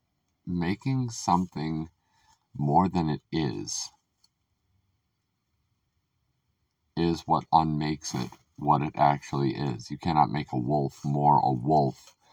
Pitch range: 70-90 Hz